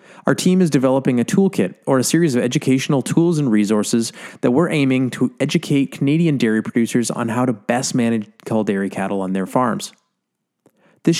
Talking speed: 180 wpm